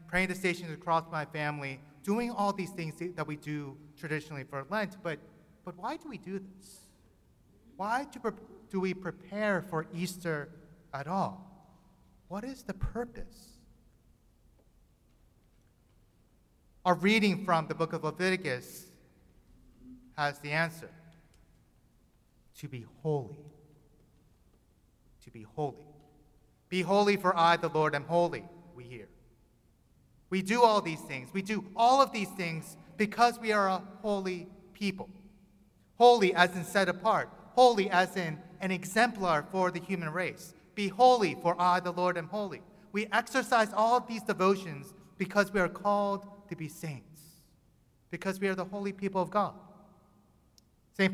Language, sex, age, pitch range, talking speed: English, male, 30-49, 160-205 Hz, 145 wpm